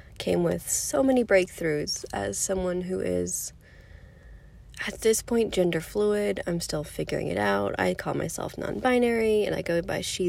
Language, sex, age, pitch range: English, female, 30-49, 145-200 Hz